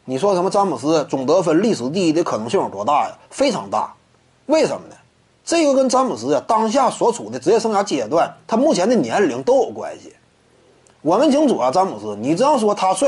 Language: Chinese